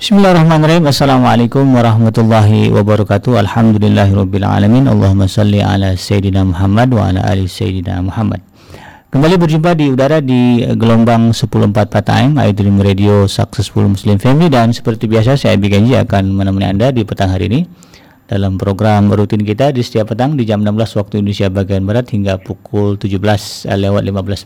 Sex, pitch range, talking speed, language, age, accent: male, 100-120 Hz, 150 wpm, Indonesian, 50-69, native